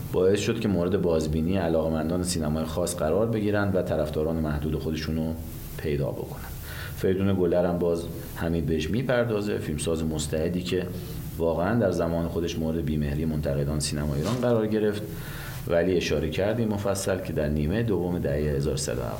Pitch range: 75-90 Hz